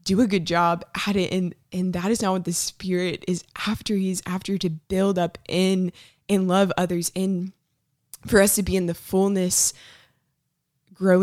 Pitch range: 165-195 Hz